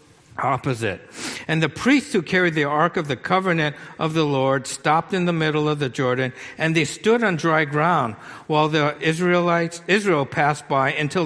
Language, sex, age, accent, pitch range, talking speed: English, male, 60-79, American, 145-185 Hz, 180 wpm